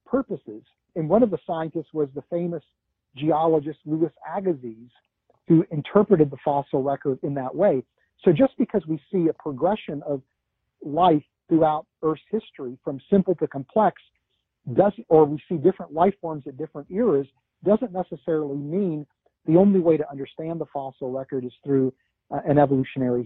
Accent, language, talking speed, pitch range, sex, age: American, English, 155 wpm, 145-185 Hz, male, 50-69